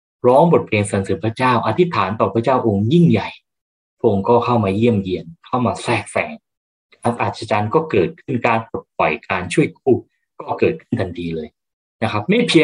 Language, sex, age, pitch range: Thai, male, 20-39, 95-130 Hz